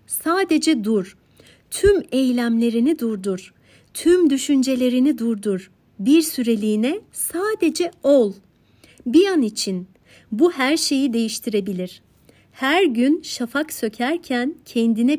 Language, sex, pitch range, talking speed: Turkish, female, 200-280 Hz, 95 wpm